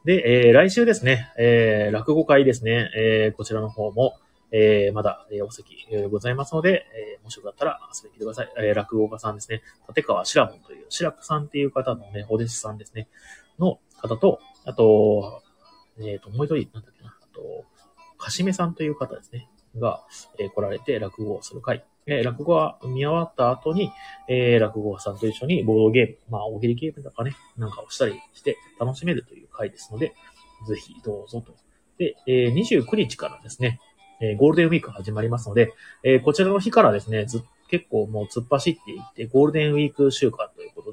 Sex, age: male, 30-49